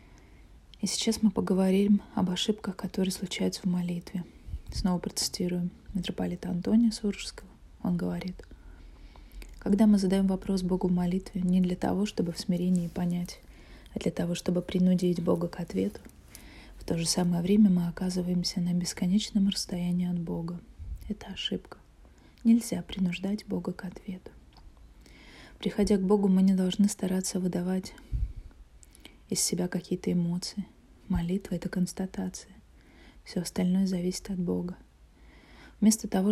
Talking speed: 135 wpm